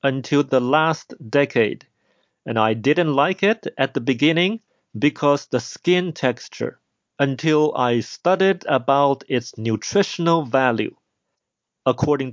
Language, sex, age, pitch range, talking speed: English, male, 40-59, 130-185 Hz, 115 wpm